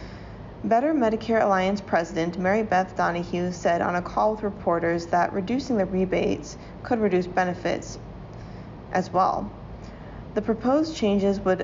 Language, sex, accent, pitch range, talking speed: English, female, American, 180-210 Hz, 135 wpm